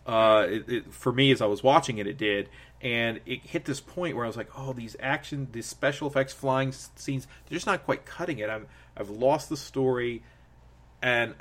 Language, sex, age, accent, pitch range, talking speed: English, male, 30-49, American, 115-145 Hz, 220 wpm